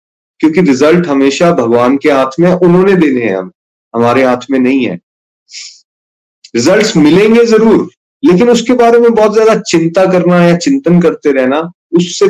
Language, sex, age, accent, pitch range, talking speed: Hindi, male, 30-49, native, 135-190 Hz, 155 wpm